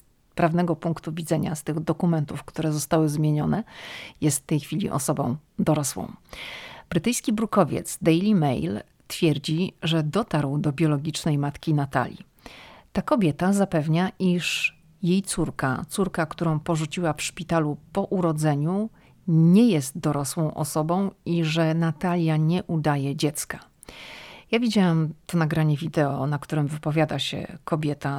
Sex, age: female, 40-59